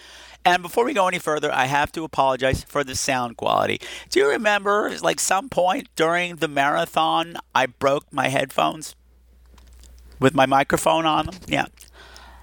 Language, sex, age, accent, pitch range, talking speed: English, male, 50-69, American, 105-160 Hz, 160 wpm